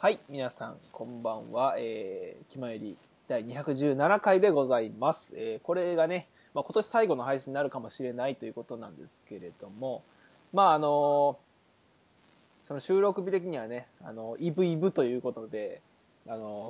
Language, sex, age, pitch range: Japanese, male, 20-39, 125-195 Hz